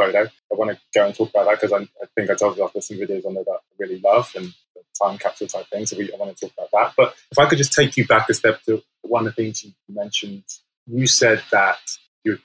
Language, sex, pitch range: English, male, 105-130 Hz